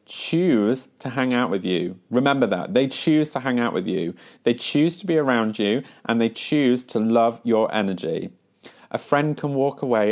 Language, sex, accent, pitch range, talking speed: English, male, British, 95-125 Hz, 195 wpm